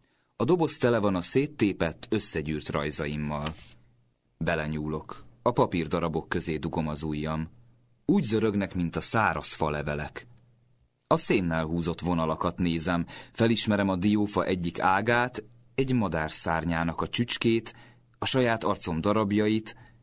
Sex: male